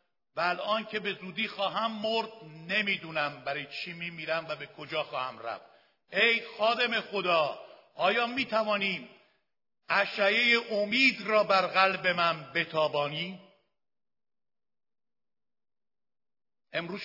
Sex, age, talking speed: male, 60-79, 100 wpm